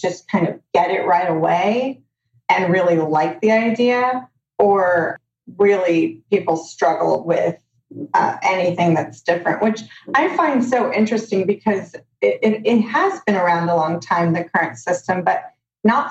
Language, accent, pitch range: English, American, 170-215 Hz